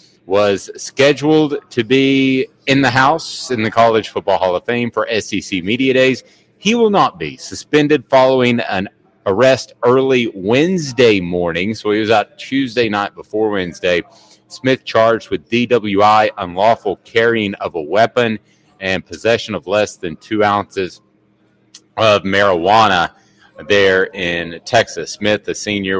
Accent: American